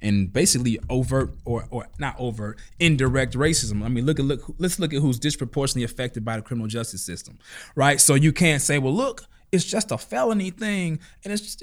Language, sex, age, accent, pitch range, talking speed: English, male, 20-39, American, 115-190 Hz, 205 wpm